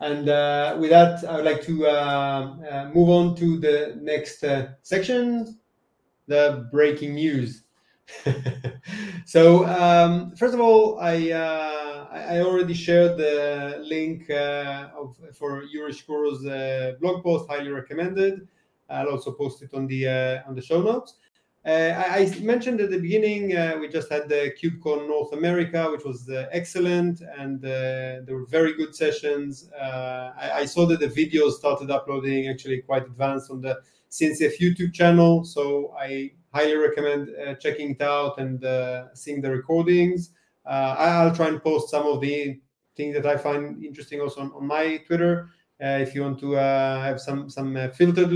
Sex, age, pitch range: male, 30-49, 140-170 Hz